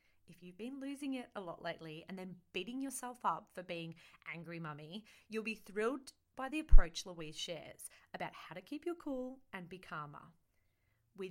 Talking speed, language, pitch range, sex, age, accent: 185 wpm, English, 180-250 Hz, female, 30-49, Australian